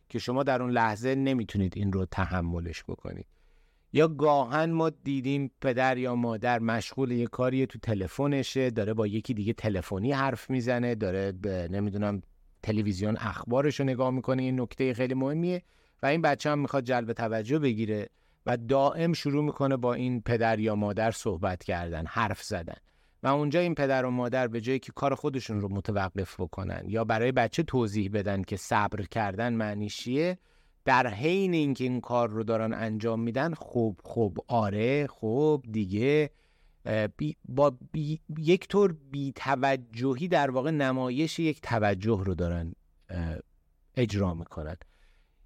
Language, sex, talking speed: Persian, male, 155 wpm